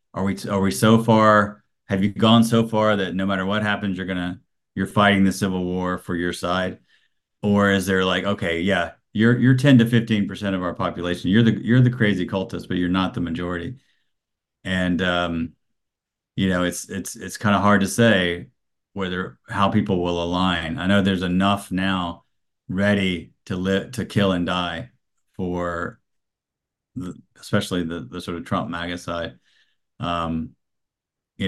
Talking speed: 180 wpm